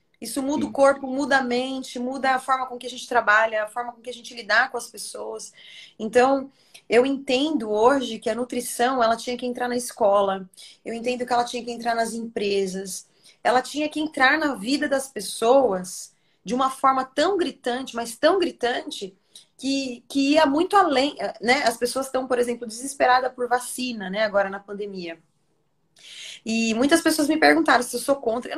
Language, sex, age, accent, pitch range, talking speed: Portuguese, female, 20-39, Brazilian, 215-280 Hz, 190 wpm